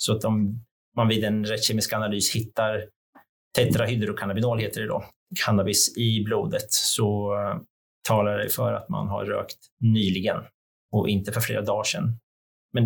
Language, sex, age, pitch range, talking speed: Swedish, male, 30-49, 105-115 Hz, 155 wpm